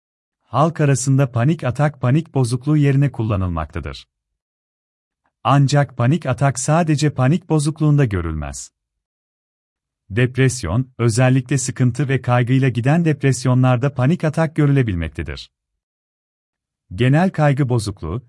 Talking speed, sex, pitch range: 90 wpm, male, 85-145 Hz